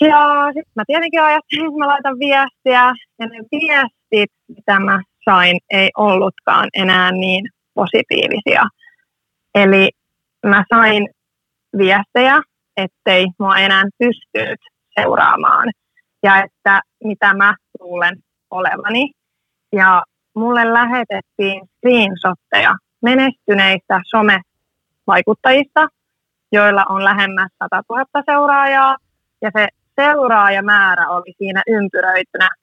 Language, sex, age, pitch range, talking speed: Finnish, female, 20-39, 190-260 Hz, 100 wpm